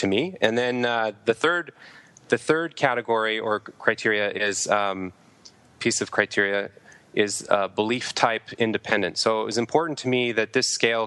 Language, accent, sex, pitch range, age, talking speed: English, American, male, 105-120 Hz, 20-39, 165 wpm